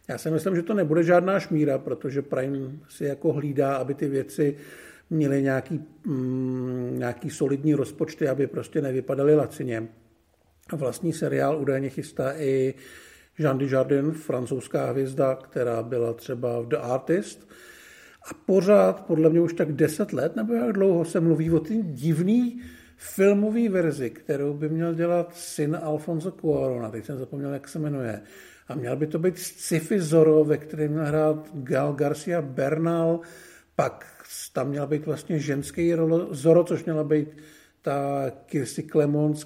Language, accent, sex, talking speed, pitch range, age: Czech, native, male, 150 wpm, 140-170 Hz, 50-69